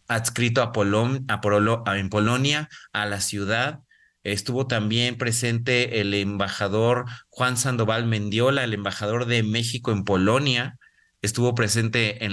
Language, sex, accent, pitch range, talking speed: Spanish, male, Mexican, 110-130 Hz, 135 wpm